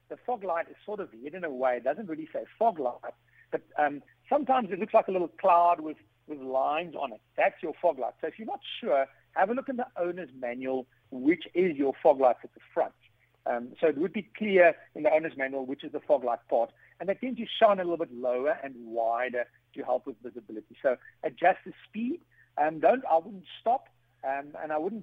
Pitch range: 135-195 Hz